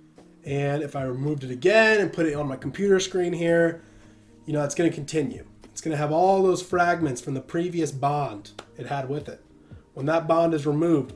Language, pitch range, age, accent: English, 140-180 Hz, 20-39, American